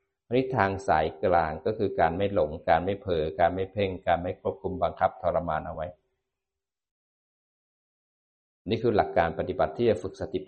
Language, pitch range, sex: Thai, 85-110 Hz, male